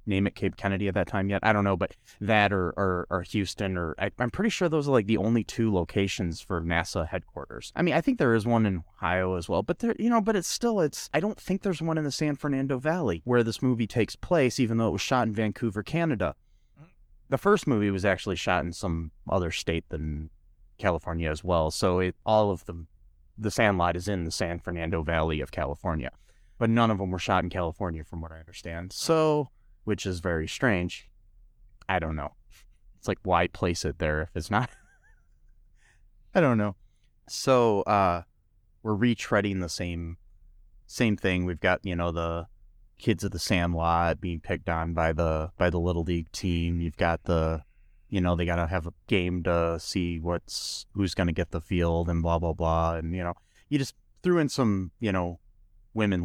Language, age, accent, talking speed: English, 30-49, American, 210 wpm